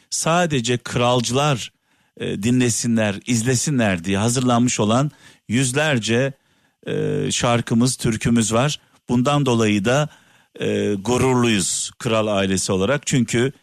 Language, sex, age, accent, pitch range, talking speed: Turkish, male, 50-69, native, 115-155 Hz, 95 wpm